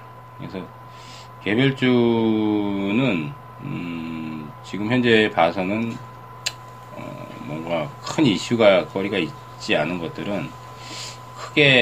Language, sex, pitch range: Korean, male, 90-125 Hz